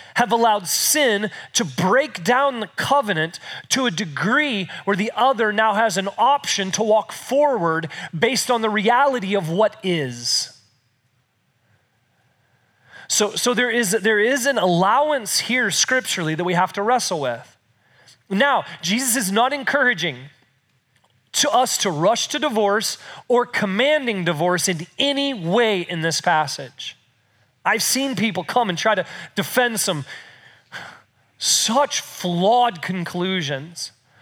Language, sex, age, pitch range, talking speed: English, male, 30-49, 165-230 Hz, 135 wpm